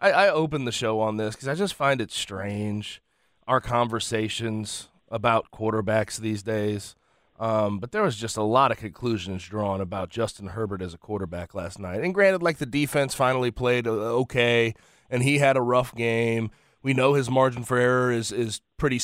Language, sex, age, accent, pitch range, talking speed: English, male, 30-49, American, 110-130 Hz, 185 wpm